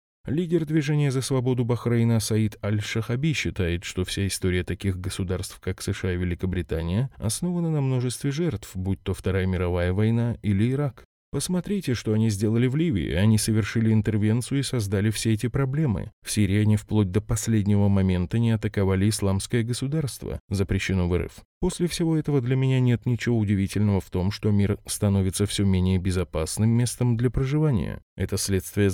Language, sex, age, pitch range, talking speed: Russian, male, 20-39, 95-125 Hz, 160 wpm